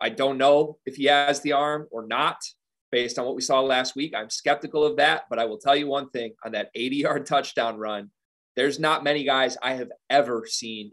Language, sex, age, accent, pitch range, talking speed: English, male, 30-49, American, 115-150 Hz, 230 wpm